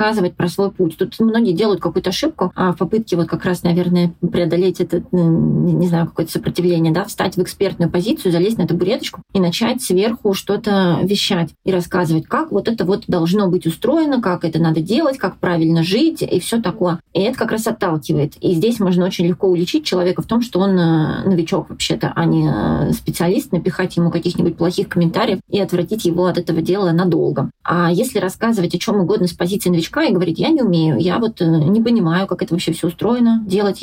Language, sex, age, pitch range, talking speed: Russian, female, 20-39, 175-200 Hz, 195 wpm